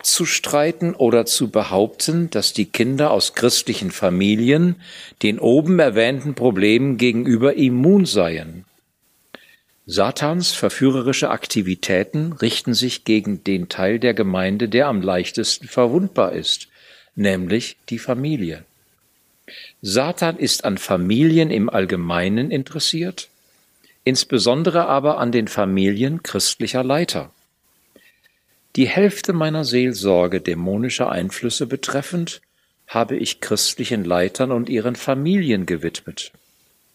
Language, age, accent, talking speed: German, 50-69, German, 105 wpm